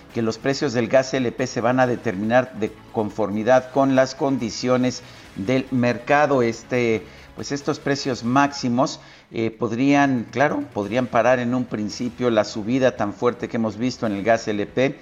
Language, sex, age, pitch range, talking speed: Spanish, male, 50-69, 105-125 Hz, 165 wpm